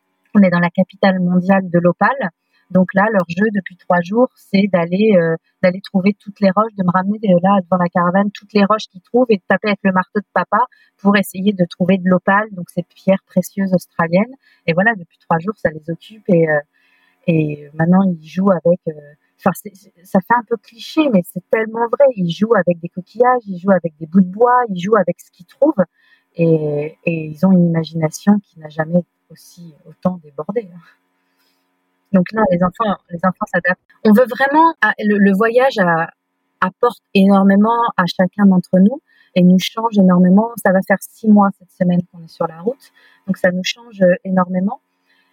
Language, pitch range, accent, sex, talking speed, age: French, 175-215 Hz, French, female, 200 wpm, 40-59